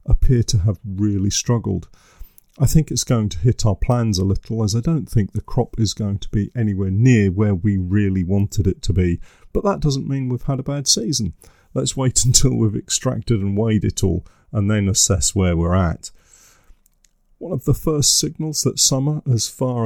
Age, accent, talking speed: 40-59, British, 200 wpm